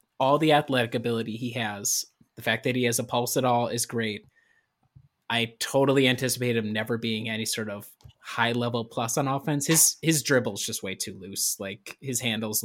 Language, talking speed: English, 195 wpm